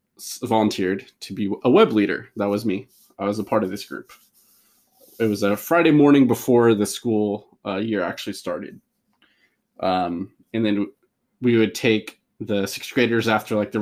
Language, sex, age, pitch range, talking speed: English, male, 20-39, 105-150 Hz, 175 wpm